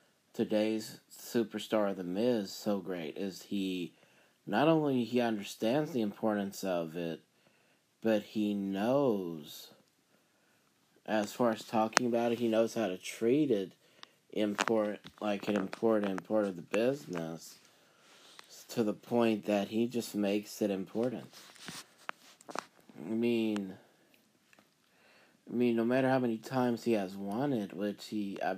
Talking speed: 140 wpm